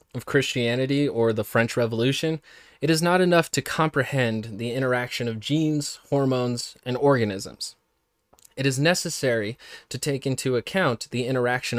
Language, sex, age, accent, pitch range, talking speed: English, male, 20-39, American, 115-160 Hz, 145 wpm